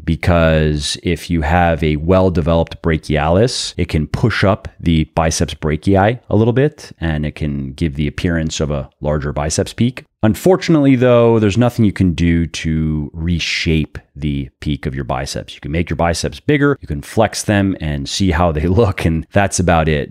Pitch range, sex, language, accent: 75-95 Hz, male, English, American